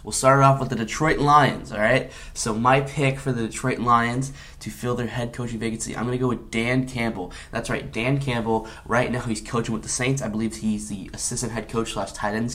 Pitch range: 110-135 Hz